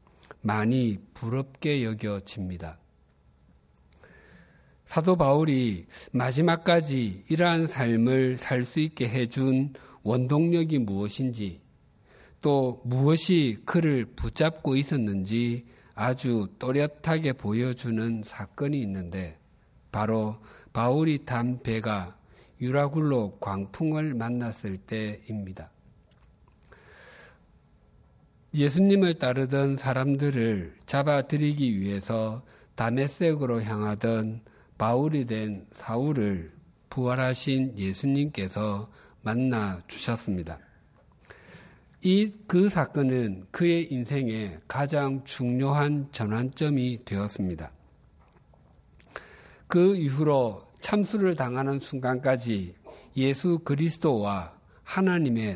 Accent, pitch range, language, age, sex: native, 105-140 Hz, Korean, 50-69, male